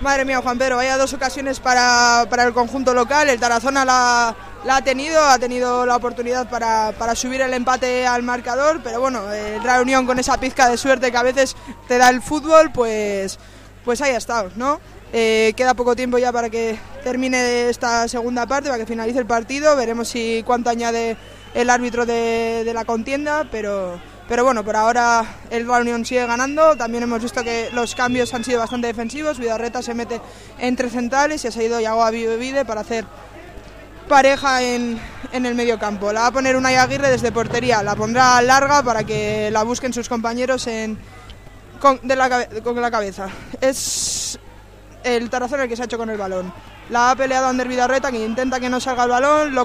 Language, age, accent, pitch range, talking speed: Spanish, 20-39, Spanish, 230-260 Hz, 195 wpm